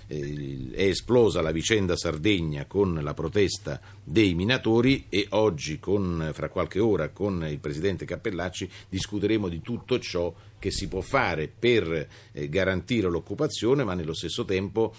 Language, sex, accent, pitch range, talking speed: Italian, male, native, 80-105 Hz, 135 wpm